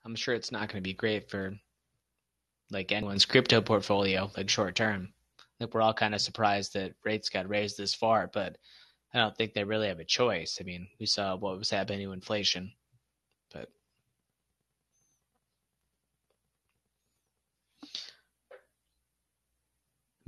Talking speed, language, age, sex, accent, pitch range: 140 wpm, English, 20-39, male, American, 100-120 Hz